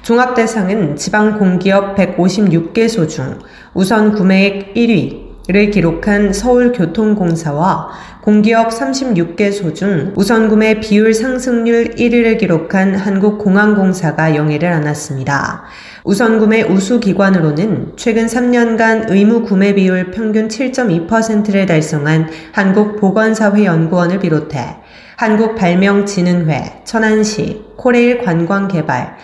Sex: female